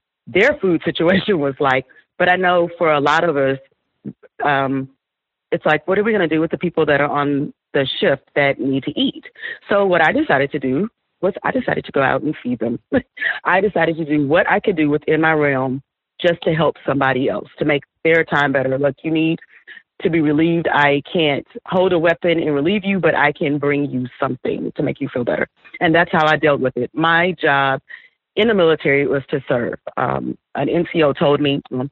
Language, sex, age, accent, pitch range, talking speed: English, female, 30-49, American, 135-165 Hz, 220 wpm